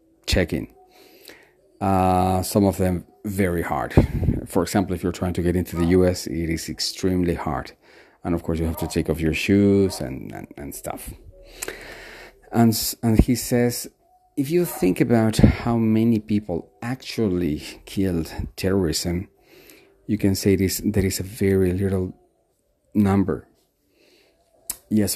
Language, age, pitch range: English, 40-59, 85-105 Hz